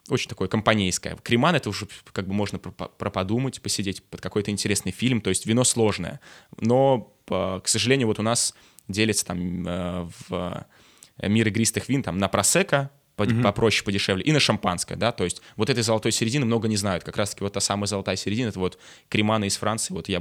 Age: 20-39